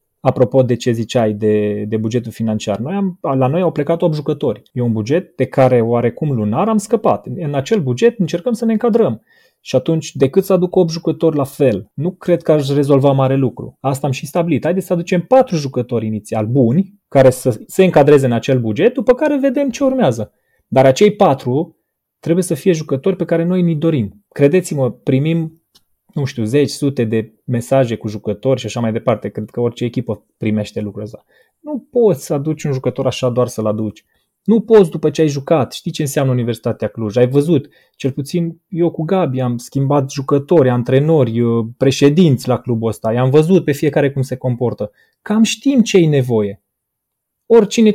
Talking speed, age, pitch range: 190 wpm, 30-49, 120-175 Hz